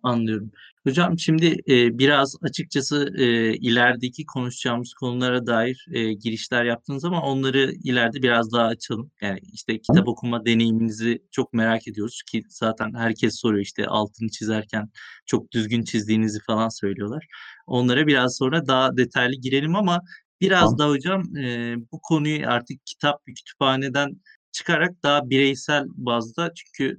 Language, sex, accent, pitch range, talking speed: Turkish, male, native, 115-160 Hz, 130 wpm